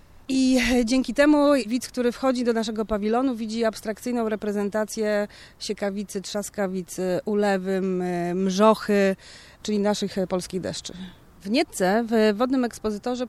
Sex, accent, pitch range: female, native, 195-225 Hz